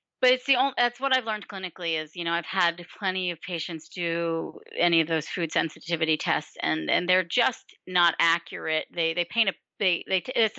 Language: English